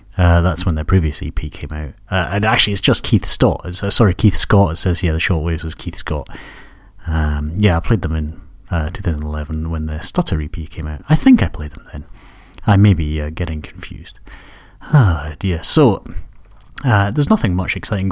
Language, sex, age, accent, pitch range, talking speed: English, male, 30-49, British, 80-115 Hz, 205 wpm